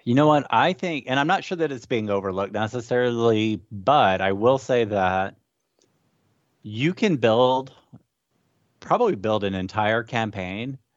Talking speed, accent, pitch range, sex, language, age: 150 wpm, American, 95-115 Hz, male, English, 30-49